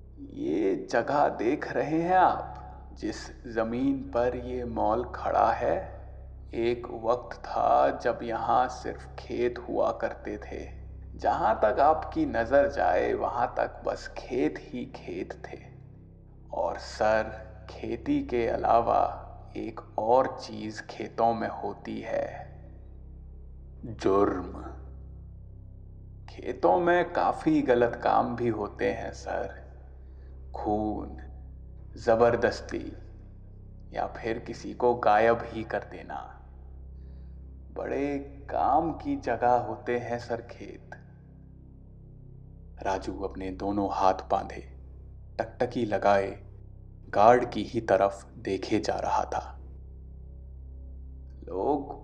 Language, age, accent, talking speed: Hindi, 30-49, native, 105 wpm